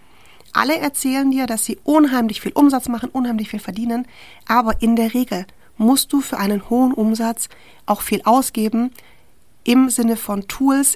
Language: German